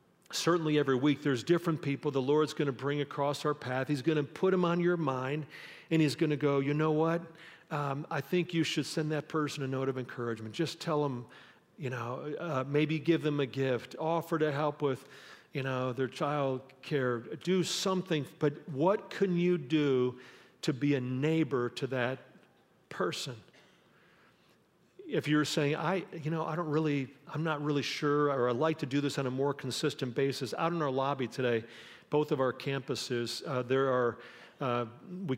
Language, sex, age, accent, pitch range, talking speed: English, male, 50-69, American, 130-155 Hz, 195 wpm